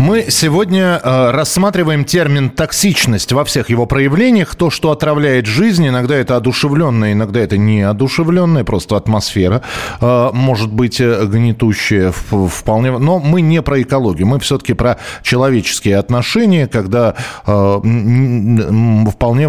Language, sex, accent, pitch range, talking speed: Russian, male, native, 110-140 Hz, 115 wpm